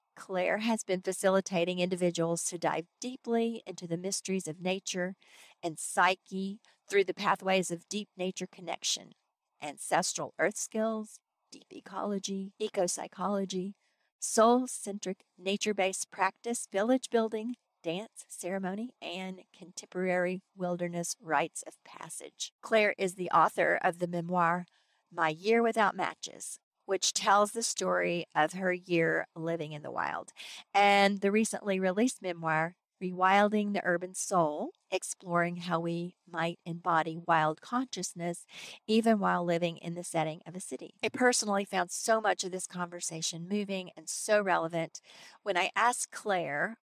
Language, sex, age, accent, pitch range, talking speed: English, female, 50-69, American, 175-210 Hz, 135 wpm